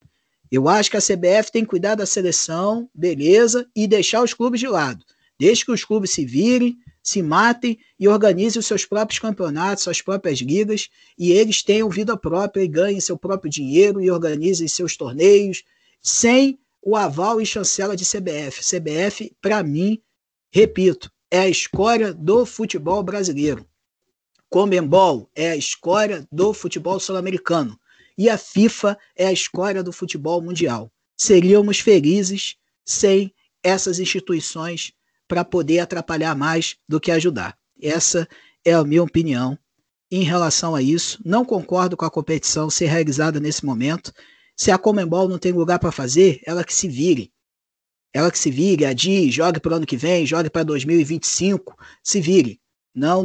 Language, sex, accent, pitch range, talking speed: Portuguese, male, Brazilian, 165-205 Hz, 160 wpm